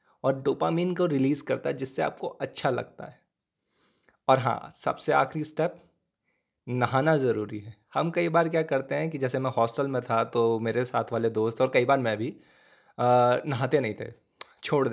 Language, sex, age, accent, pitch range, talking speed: Hindi, male, 20-39, native, 120-155 Hz, 185 wpm